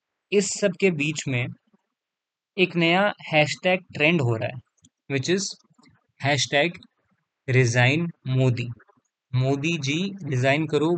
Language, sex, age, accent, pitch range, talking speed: Hindi, male, 20-39, native, 125-150 Hz, 115 wpm